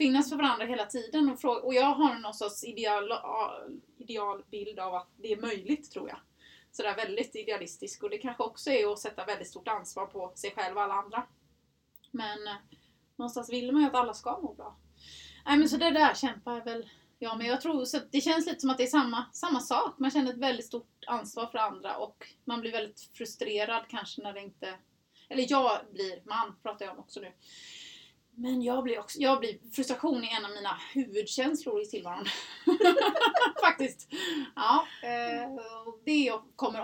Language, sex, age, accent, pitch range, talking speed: English, female, 20-39, Swedish, 210-275 Hz, 195 wpm